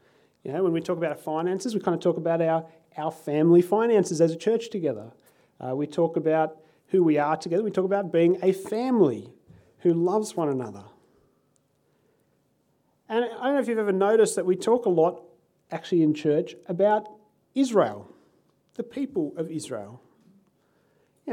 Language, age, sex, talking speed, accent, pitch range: English, 40-59, male, 175 wpm, Australian, 155-210 Hz